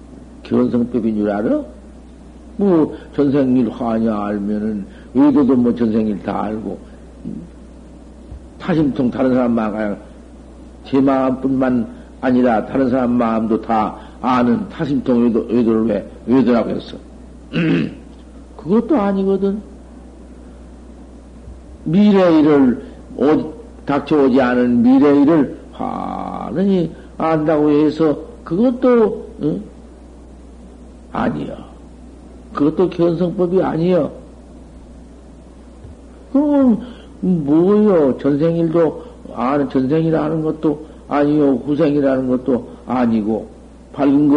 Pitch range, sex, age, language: 125-195 Hz, male, 50-69, Korean